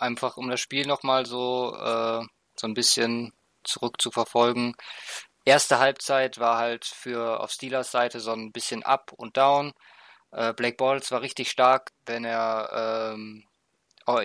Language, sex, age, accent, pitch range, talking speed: German, male, 20-39, German, 120-140 Hz, 145 wpm